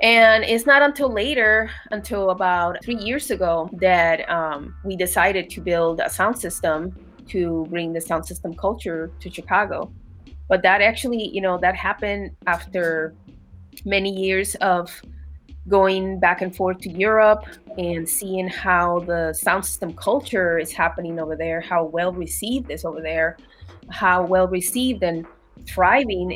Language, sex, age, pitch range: English, female, 20-39, 170-220 Hz